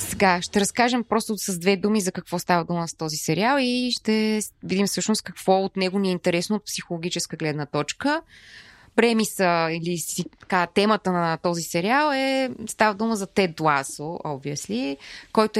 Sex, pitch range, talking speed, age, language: female, 170-220 Hz, 165 wpm, 20-39, Bulgarian